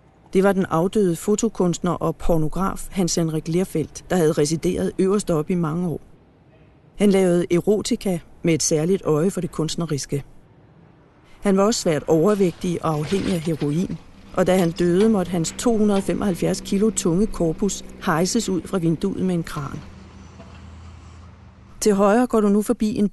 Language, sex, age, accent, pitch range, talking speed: Danish, female, 40-59, native, 160-195 Hz, 160 wpm